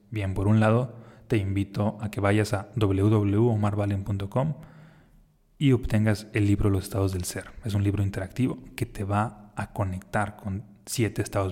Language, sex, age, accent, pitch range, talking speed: Spanish, male, 30-49, Mexican, 100-115 Hz, 160 wpm